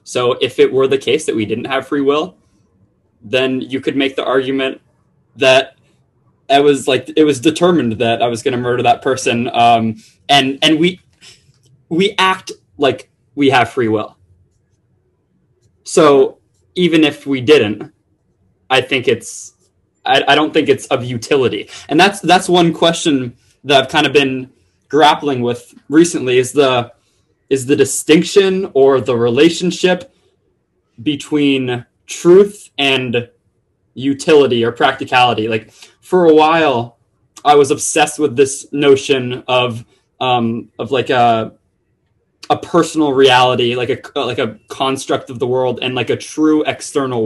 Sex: male